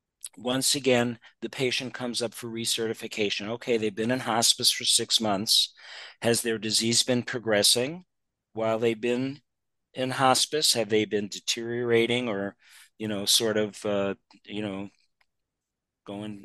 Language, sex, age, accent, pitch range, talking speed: English, male, 50-69, American, 105-120 Hz, 140 wpm